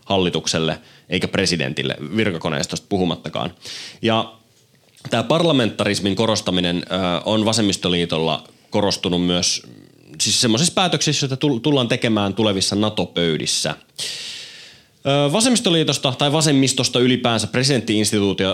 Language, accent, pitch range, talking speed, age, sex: Finnish, native, 95-135 Hz, 85 wpm, 20-39, male